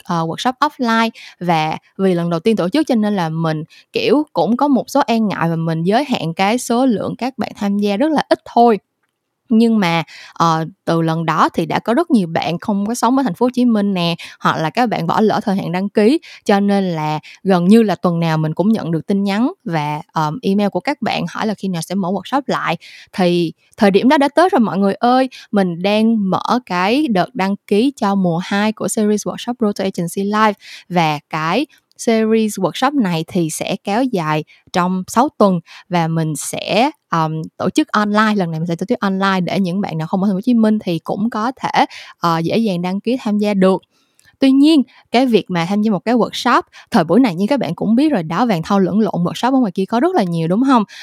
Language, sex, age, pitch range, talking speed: Vietnamese, female, 10-29, 175-235 Hz, 240 wpm